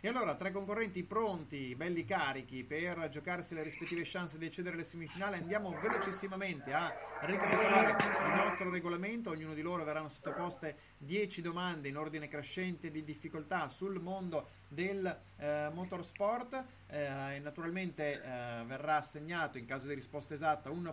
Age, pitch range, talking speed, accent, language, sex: 30-49, 150-185 Hz, 150 wpm, native, Italian, male